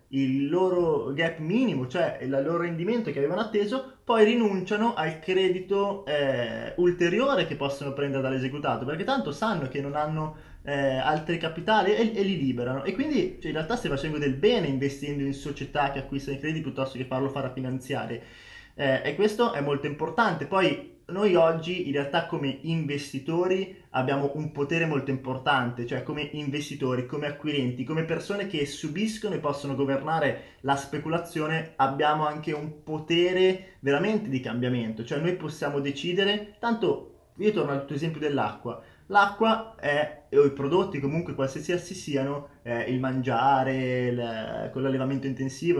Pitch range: 135-175 Hz